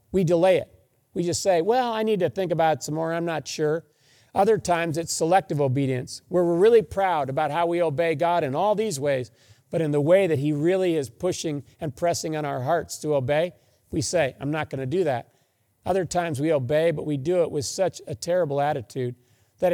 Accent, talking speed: American, 220 wpm